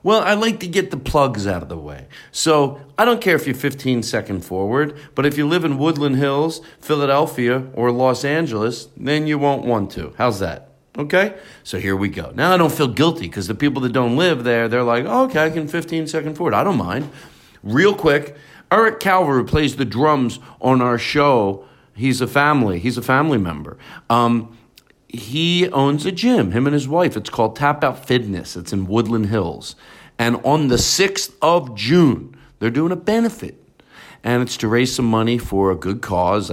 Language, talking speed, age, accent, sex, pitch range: English, 200 wpm, 40-59, American, male, 100-150 Hz